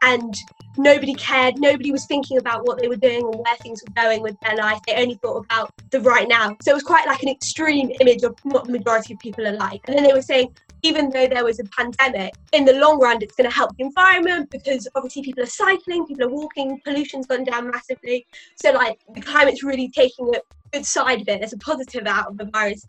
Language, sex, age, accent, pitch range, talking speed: English, female, 20-39, British, 230-275 Hz, 240 wpm